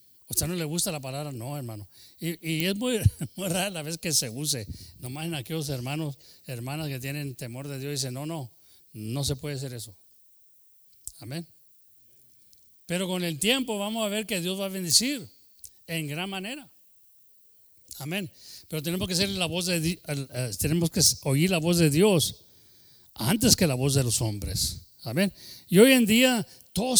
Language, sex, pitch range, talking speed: English, male, 120-185 Hz, 190 wpm